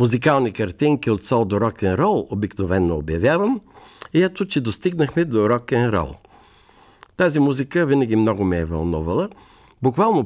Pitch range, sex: 100-150 Hz, male